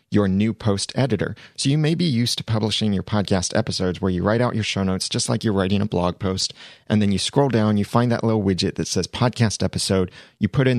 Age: 30-49